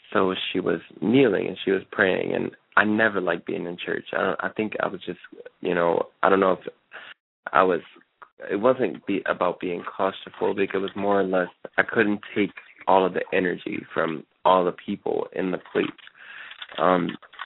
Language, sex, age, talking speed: English, male, 20-39, 195 wpm